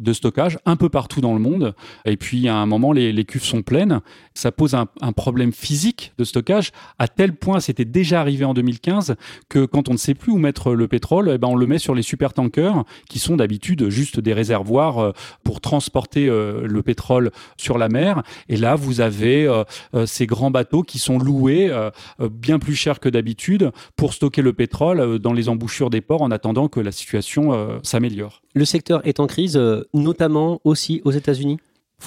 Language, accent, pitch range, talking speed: French, French, 120-150 Hz, 200 wpm